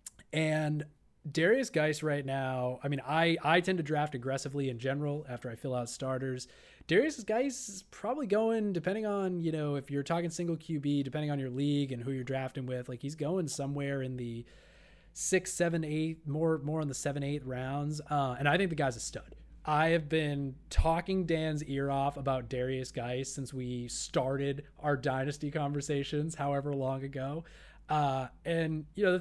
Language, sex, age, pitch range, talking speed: English, male, 20-39, 130-160 Hz, 185 wpm